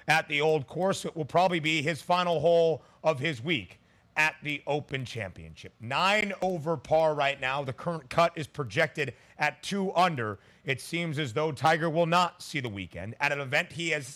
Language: English